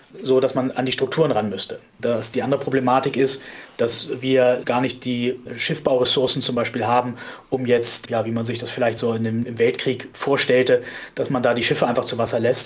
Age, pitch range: 30-49, 120-140 Hz